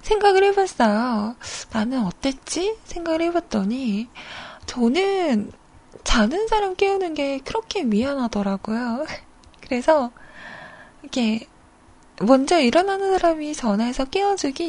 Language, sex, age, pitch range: Korean, female, 20-39, 215-315 Hz